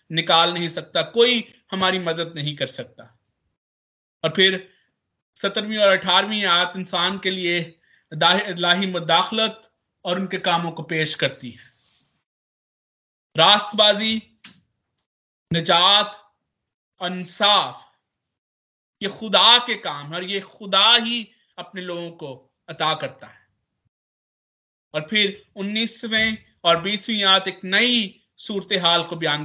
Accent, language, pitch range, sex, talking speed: native, Hindi, 170-220 Hz, male, 110 wpm